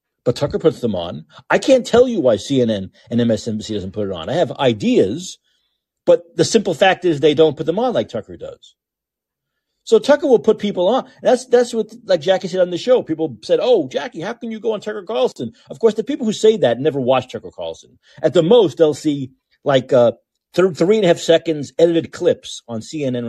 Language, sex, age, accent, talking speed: English, male, 40-59, American, 220 wpm